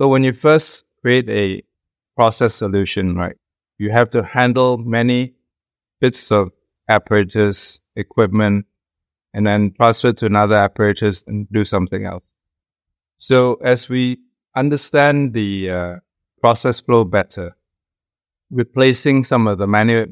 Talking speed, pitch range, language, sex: 125 wpm, 95-115 Hz, English, male